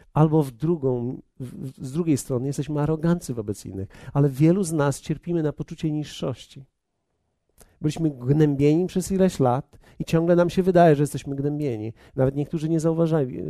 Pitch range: 120-160 Hz